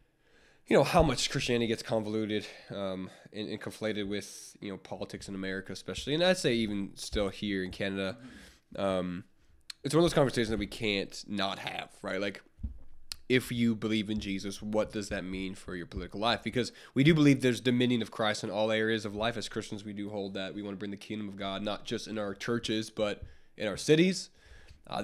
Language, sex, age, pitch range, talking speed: English, male, 20-39, 100-125 Hz, 215 wpm